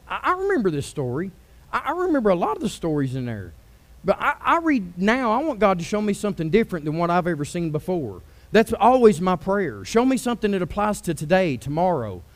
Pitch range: 170-240 Hz